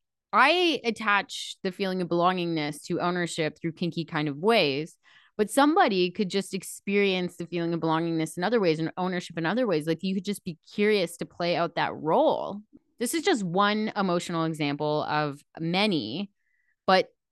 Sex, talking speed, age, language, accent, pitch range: female, 175 wpm, 20-39, English, American, 165-225 Hz